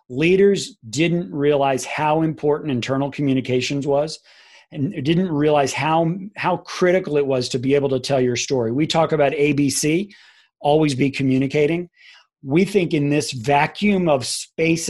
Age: 40-59